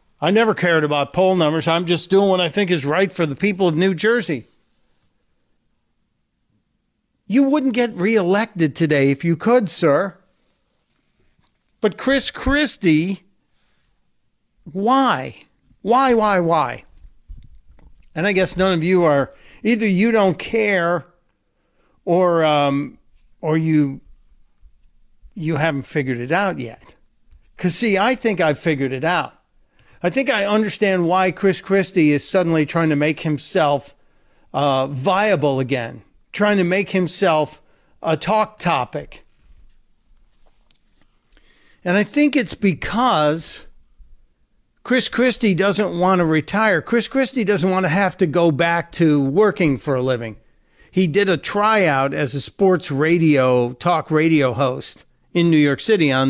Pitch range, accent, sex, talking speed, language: 145-200 Hz, American, male, 135 wpm, English